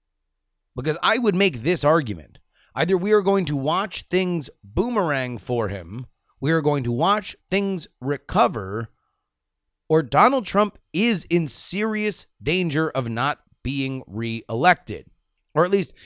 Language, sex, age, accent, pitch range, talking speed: English, male, 30-49, American, 105-170 Hz, 140 wpm